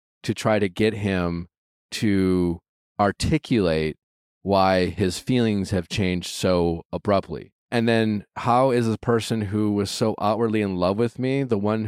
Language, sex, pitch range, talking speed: English, male, 95-125 Hz, 150 wpm